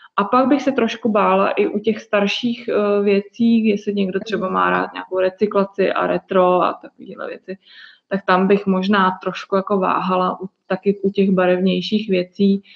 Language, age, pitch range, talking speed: Czech, 20-39, 180-200 Hz, 170 wpm